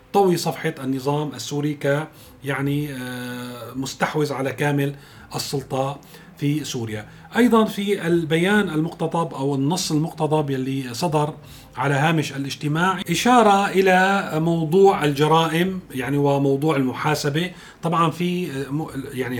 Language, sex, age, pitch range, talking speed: Arabic, male, 40-59, 135-175 Hz, 100 wpm